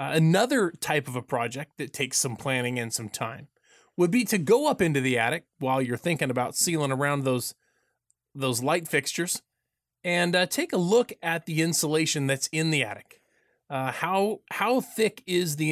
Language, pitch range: English, 140-175 Hz